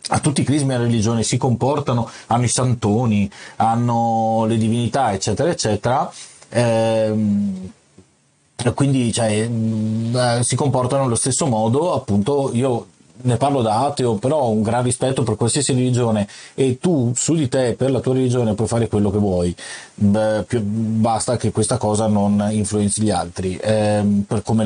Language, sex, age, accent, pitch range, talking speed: Italian, male, 30-49, native, 105-125 Hz, 155 wpm